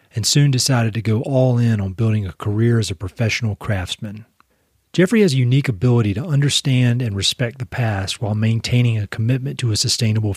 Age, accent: 40-59, American